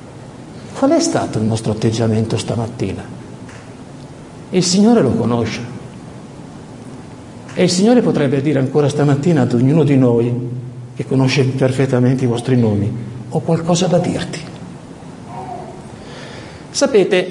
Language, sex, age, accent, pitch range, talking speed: Italian, male, 50-69, native, 150-240 Hz, 115 wpm